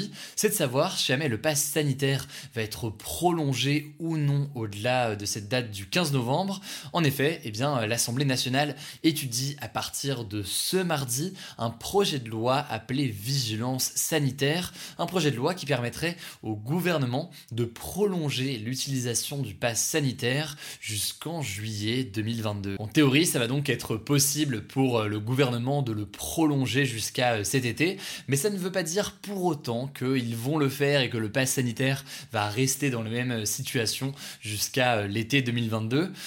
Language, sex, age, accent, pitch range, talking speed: French, male, 20-39, French, 115-150 Hz, 165 wpm